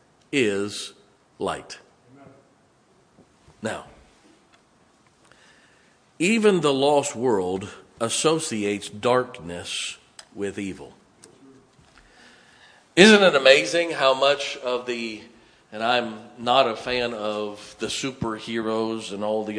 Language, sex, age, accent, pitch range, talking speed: English, male, 50-69, American, 105-135 Hz, 90 wpm